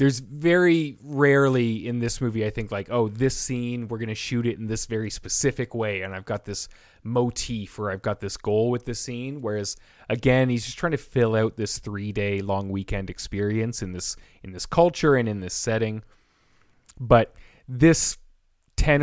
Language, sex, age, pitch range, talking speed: English, male, 30-49, 105-125 Hz, 190 wpm